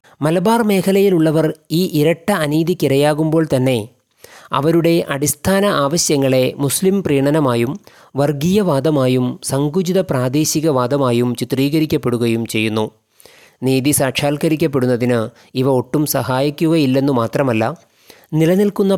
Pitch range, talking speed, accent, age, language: 125-155 Hz, 75 wpm, native, 20-39, Malayalam